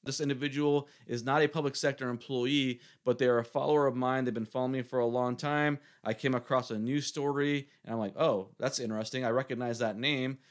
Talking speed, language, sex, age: 215 wpm, English, male, 30-49